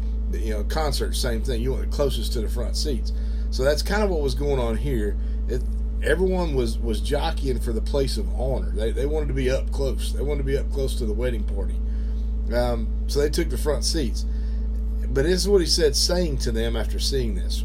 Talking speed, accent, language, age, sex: 230 wpm, American, English, 40-59, male